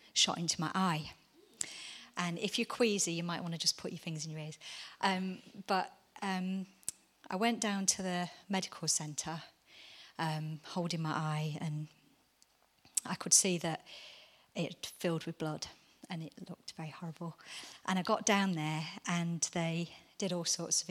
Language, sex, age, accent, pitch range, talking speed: English, female, 30-49, British, 165-195 Hz, 165 wpm